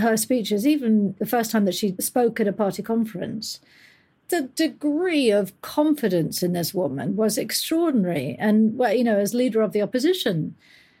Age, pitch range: 50-69, 190-225 Hz